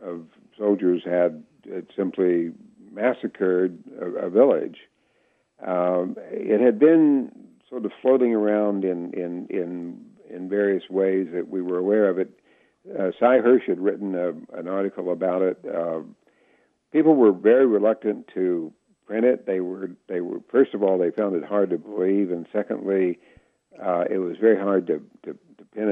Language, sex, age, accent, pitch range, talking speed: English, male, 60-79, American, 90-105 Hz, 165 wpm